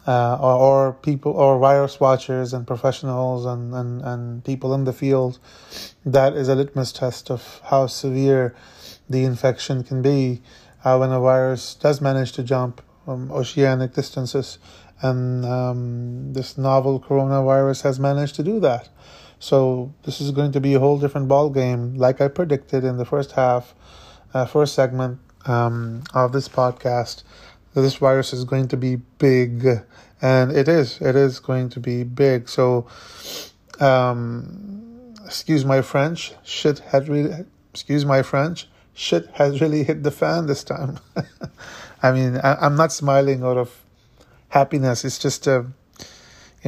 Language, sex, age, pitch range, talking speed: English, male, 20-39, 125-140 Hz, 160 wpm